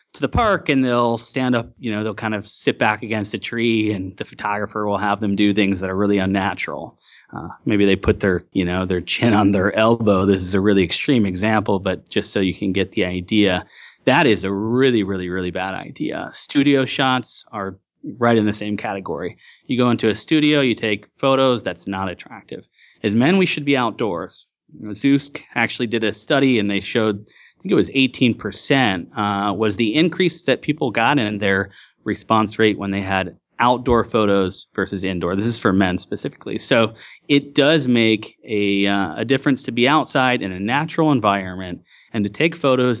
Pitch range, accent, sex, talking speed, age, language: 100-130 Hz, American, male, 200 wpm, 30-49, English